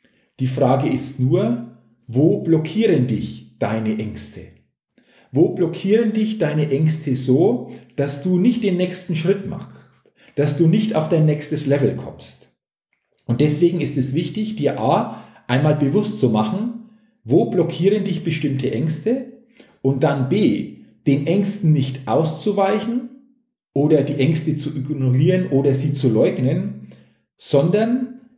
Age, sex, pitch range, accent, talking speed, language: 50-69, male, 130-190 Hz, German, 135 wpm, German